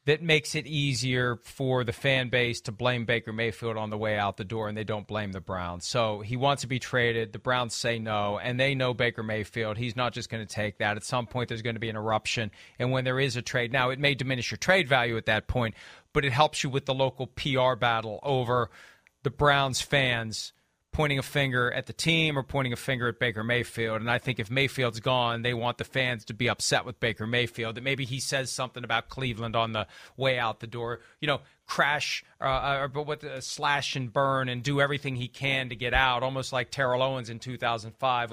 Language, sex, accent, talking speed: English, male, American, 235 wpm